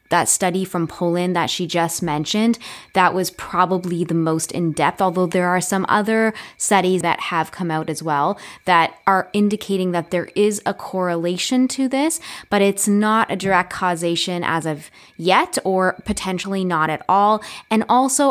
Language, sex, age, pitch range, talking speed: English, female, 20-39, 165-195 Hz, 170 wpm